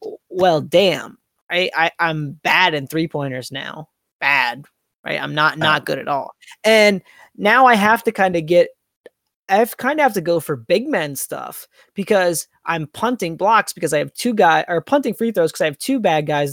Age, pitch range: 20-39, 145-185 Hz